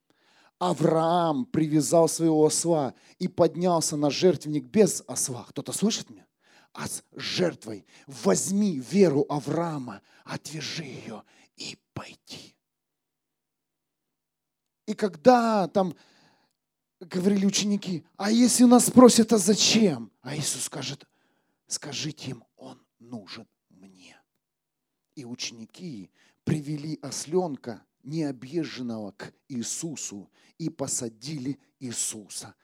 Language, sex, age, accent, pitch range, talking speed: Russian, male, 40-59, native, 145-240 Hz, 95 wpm